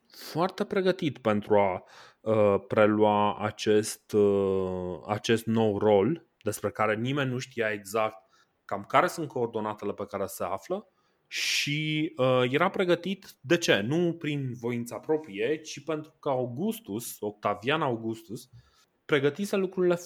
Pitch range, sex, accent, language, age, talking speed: 110-150 Hz, male, native, Romanian, 20-39, 130 wpm